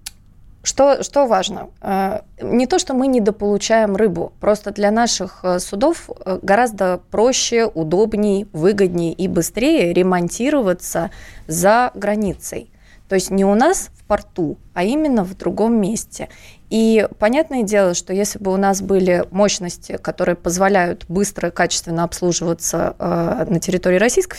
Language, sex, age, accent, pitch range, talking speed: Russian, female, 20-39, native, 180-220 Hz, 130 wpm